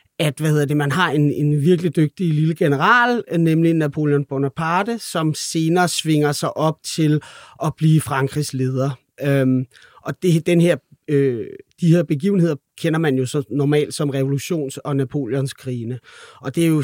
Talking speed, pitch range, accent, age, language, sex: 165 wpm, 140-180 Hz, native, 30-49, Danish, male